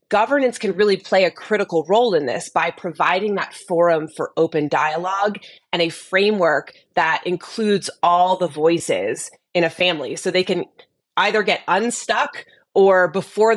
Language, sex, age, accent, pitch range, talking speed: English, female, 20-39, American, 165-205 Hz, 155 wpm